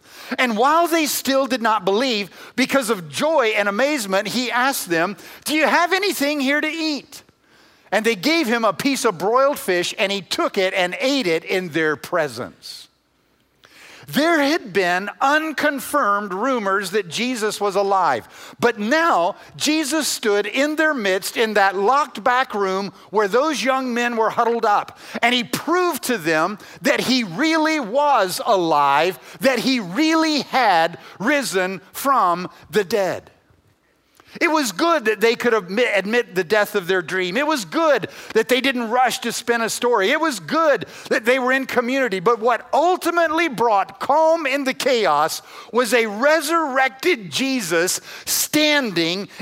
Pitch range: 200-290 Hz